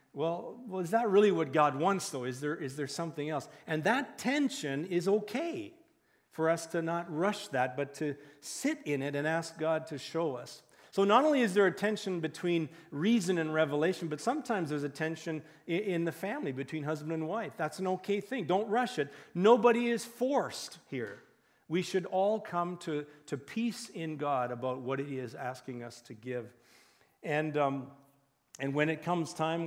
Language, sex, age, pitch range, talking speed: English, male, 50-69, 140-190 Hz, 190 wpm